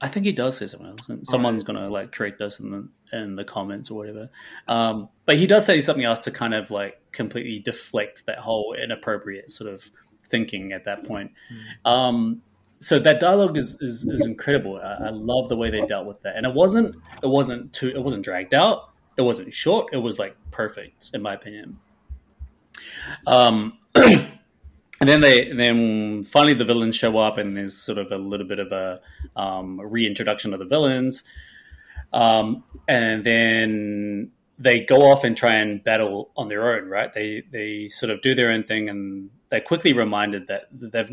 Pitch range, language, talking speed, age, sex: 105-125 Hz, English, 190 wpm, 30-49, male